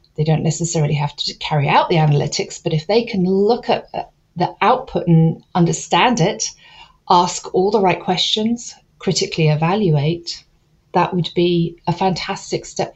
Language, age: English, 40-59